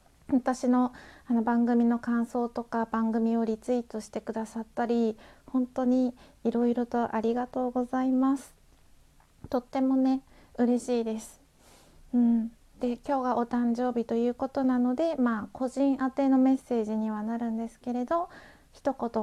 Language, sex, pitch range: Japanese, female, 225-265 Hz